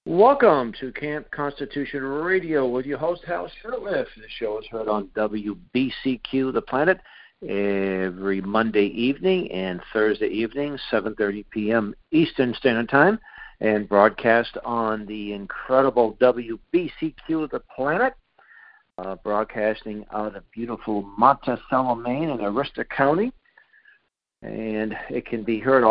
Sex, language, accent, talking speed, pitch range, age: male, English, American, 125 wpm, 105-135 Hz, 60-79